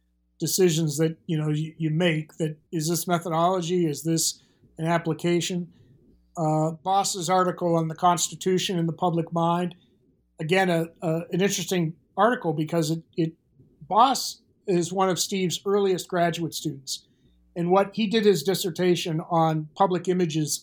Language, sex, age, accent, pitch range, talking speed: English, male, 50-69, American, 160-195 Hz, 145 wpm